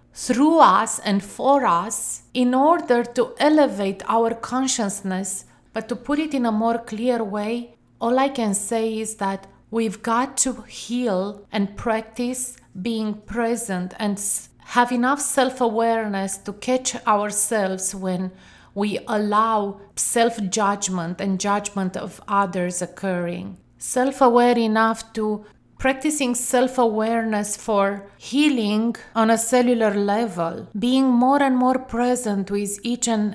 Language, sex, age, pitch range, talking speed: English, female, 30-49, 200-245 Hz, 125 wpm